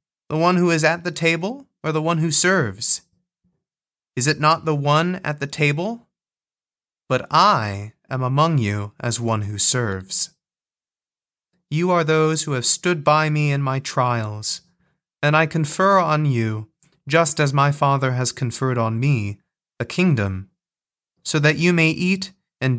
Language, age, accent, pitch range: English, 30-49, American, 120-160 Hz